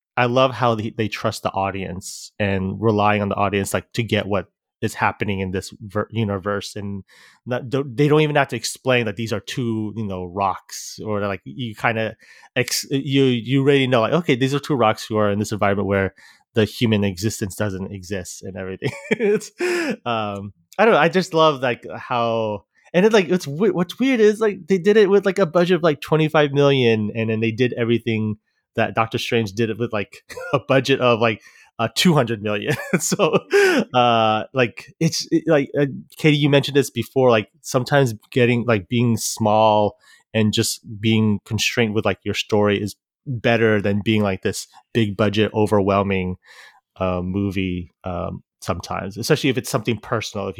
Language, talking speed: English, 190 wpm